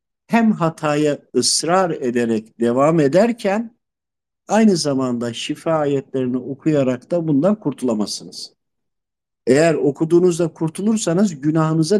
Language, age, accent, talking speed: Turkish, 50-69, native, 90 wpm